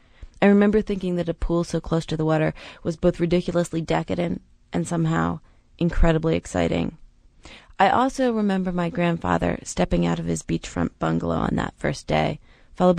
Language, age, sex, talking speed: English, 30-49, female, 160 wpm